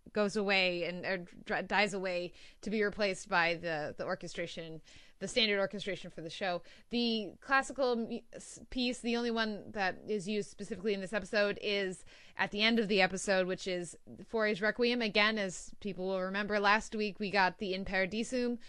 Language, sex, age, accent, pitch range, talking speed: English, female, 20-39, American, 185-220 Hz, 175 wpm